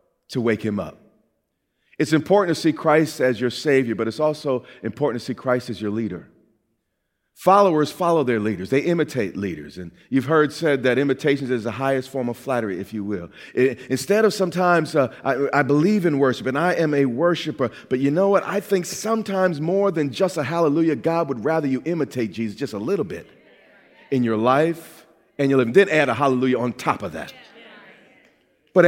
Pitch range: 130-180 Hz